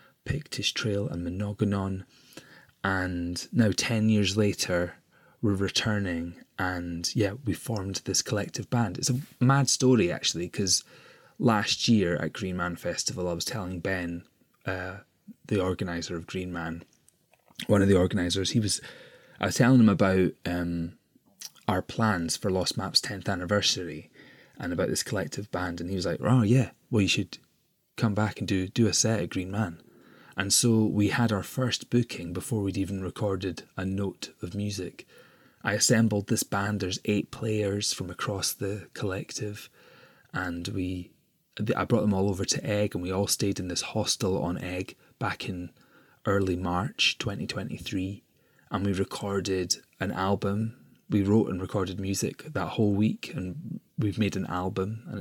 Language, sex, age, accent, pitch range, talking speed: English, male, 20-39, British, 90-110 Hz, 165 wpm